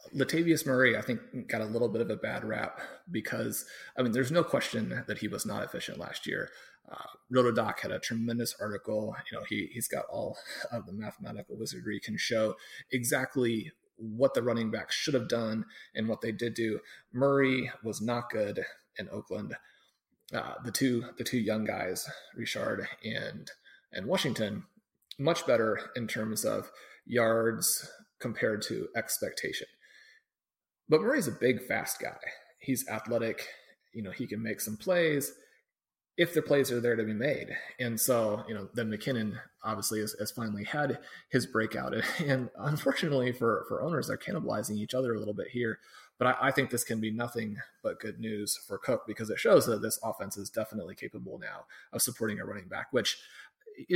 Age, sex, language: 30-49, male, English